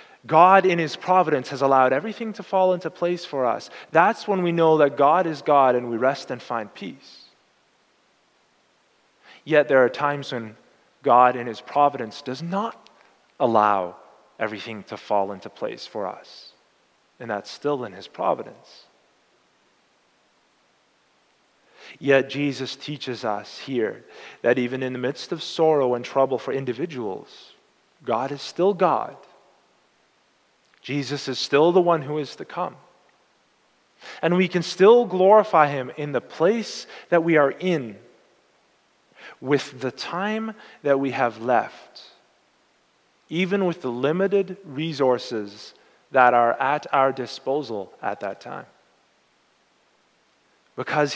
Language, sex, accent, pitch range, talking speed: English, male, American, 125-170 Hz, 135 wpm